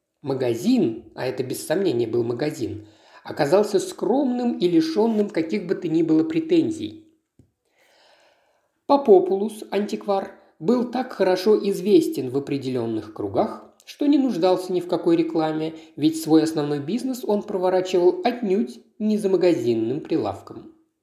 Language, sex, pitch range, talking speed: Russian, male, 160-250 Hz, 125 wpm